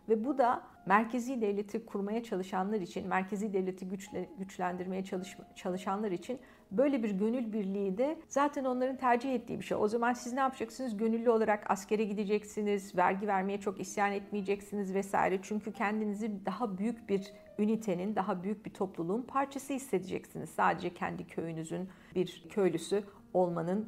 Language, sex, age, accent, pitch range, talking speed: Turkish, female, 50-69, native, 190-230 Hz, 145 wpm